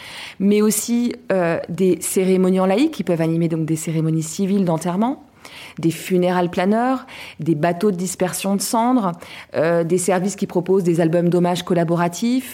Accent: French